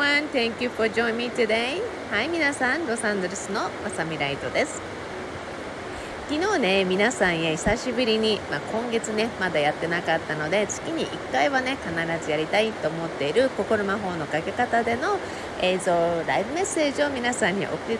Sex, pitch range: female, 170-250 Hz